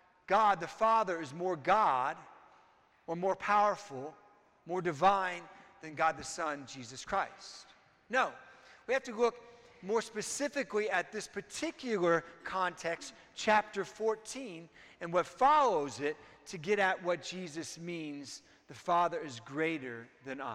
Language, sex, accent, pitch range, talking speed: English, male, American, 175-240 Hz, 130 wpm